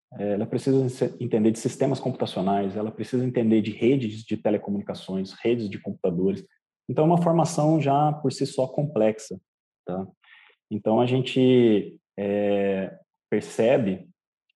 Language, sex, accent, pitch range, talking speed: Portuguese, male, Brazilian, 105-135 Hz, 130 wpm